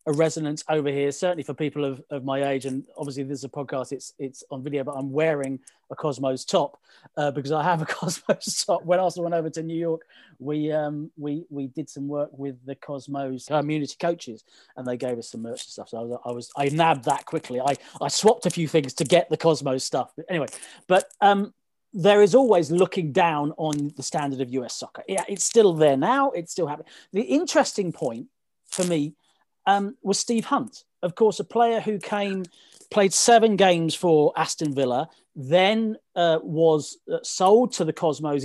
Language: English